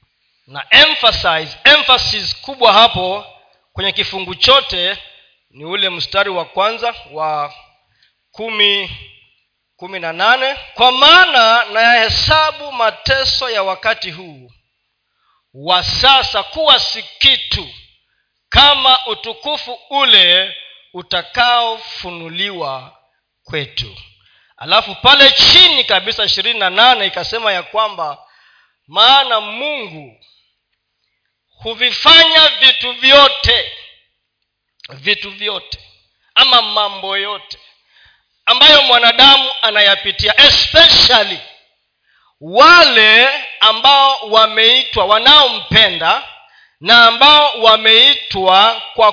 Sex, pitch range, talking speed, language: male, 185-270 Hz, 80 wpm, Swahili